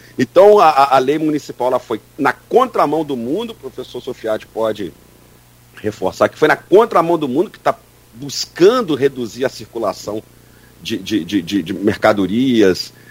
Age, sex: 50-69, male